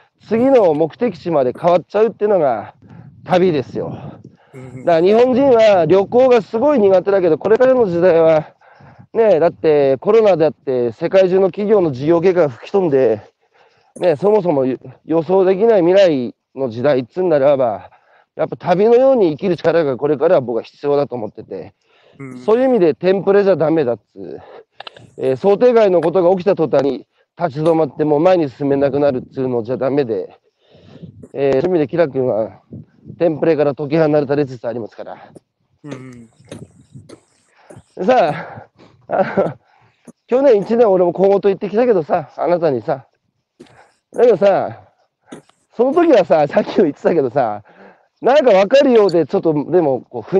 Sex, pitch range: male, 145-215 Hz